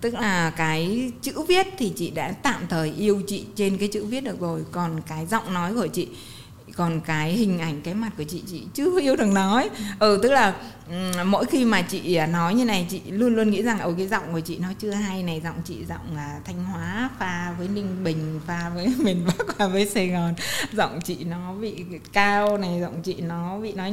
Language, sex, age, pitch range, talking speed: Vietnamese, female, 20-39, 180-240 Hz, 225 wpm